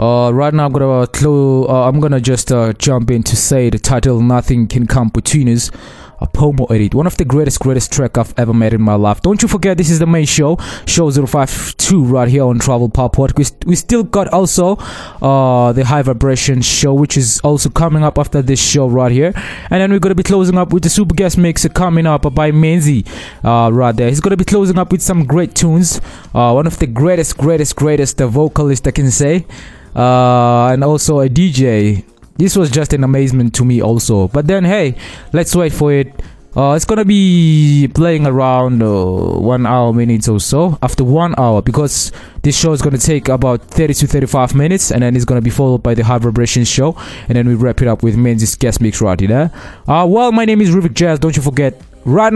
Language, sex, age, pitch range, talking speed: English, male, 20-39, 120-160 Hz, 220 wpm